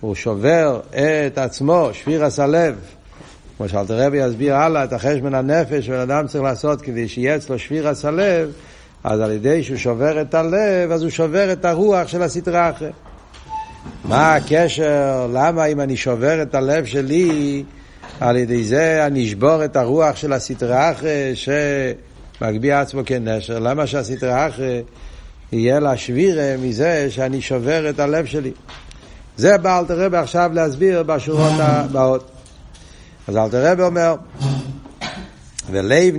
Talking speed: 135 wpm